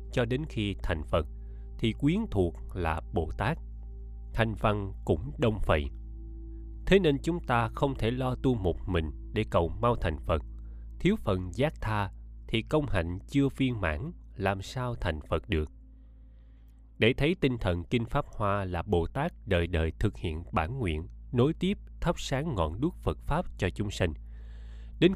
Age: 20-39